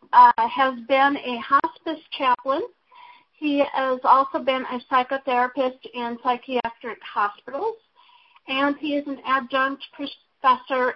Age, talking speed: 40-59, 115 wpm